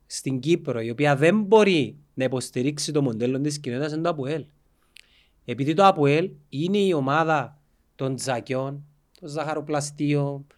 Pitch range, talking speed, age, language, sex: 110-165 Hz, 140 wpm, 30-49, Greek, male